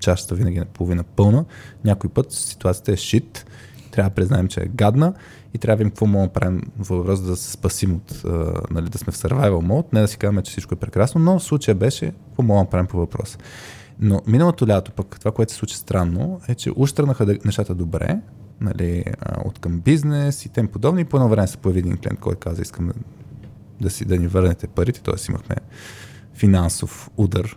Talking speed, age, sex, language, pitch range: 205 wpm, 20-39, male, Bulgarian, 95-120 Hz